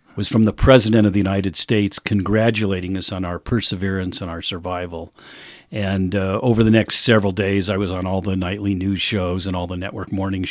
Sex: male